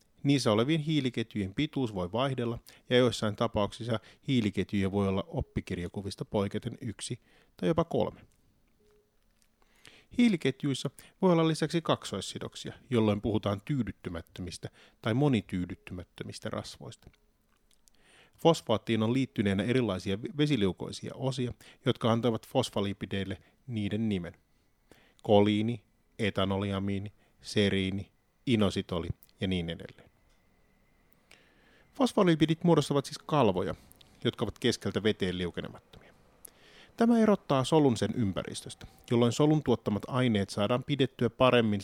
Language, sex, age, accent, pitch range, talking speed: Finnish, male, 30-49, native, 100-135 Hz, 100 wpm